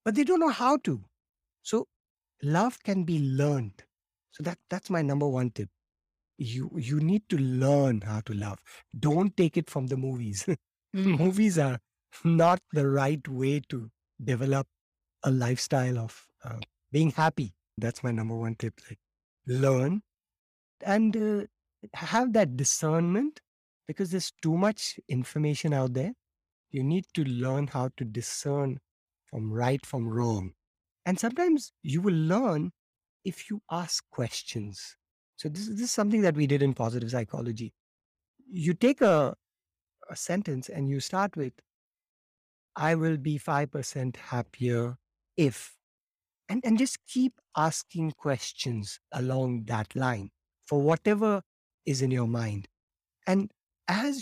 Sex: male